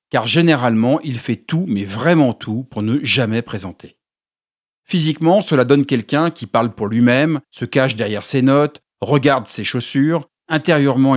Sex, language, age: male, French, 50-69